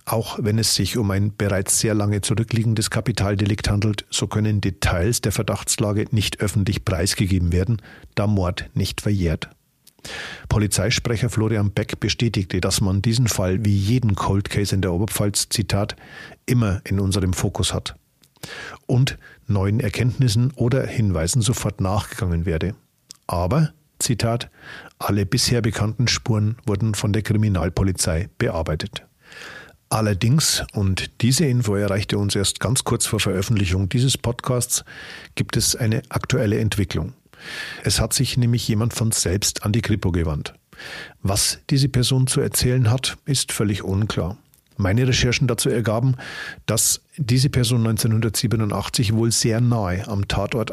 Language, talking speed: German, 135 wpm